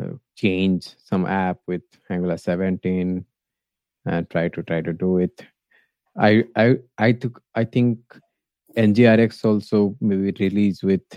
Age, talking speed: 20-39, 130 wpm